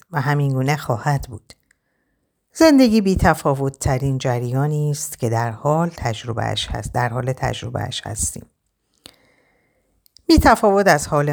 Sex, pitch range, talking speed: female, 115-170 Hz, 115 wpm